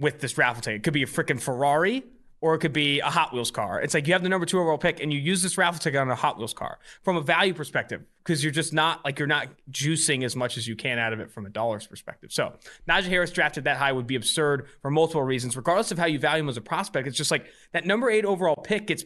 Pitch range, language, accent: 125-165 Hz, English, American